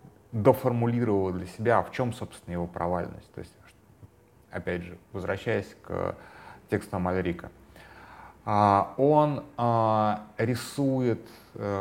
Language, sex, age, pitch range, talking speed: Russian, male, 30-49, 90-115 Hz, 90 wpm